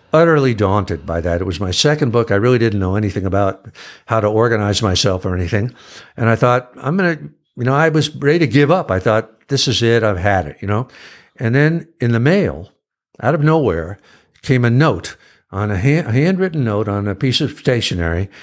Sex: male